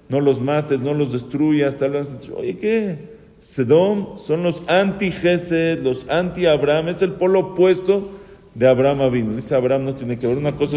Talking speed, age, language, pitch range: 175 wpm, 50-69, English, 125-165 Hz